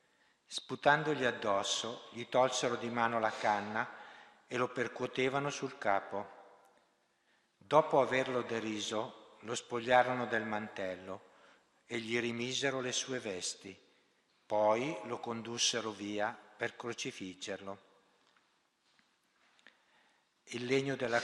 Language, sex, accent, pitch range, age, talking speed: Italian, male, native, 105-130 Hz, 60-79, 100 wpm